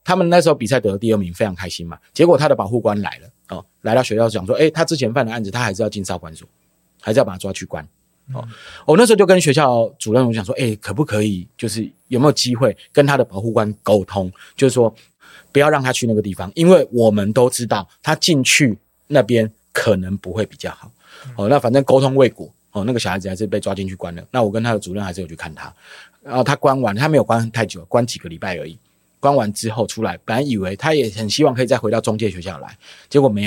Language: Chinese